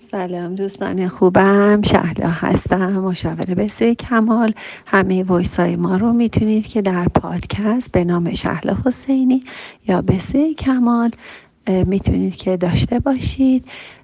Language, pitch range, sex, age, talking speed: Persian, 175-225 Hz, female, 40-59, 115 wpm